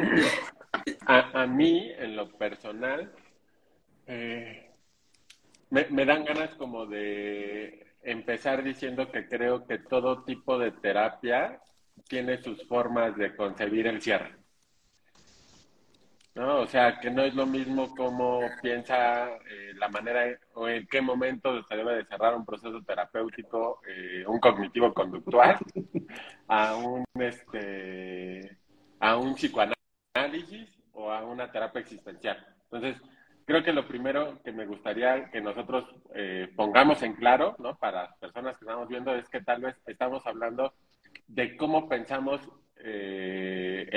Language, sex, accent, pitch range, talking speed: Spanish, male, Mexican, 110-130 Hz, 135 wpm